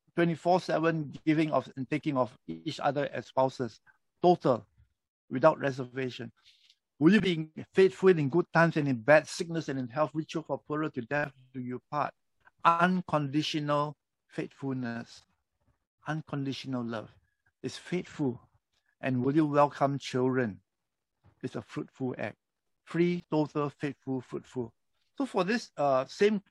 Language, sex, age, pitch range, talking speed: English, male, 60-79, 125-160 Hz, 130 wpm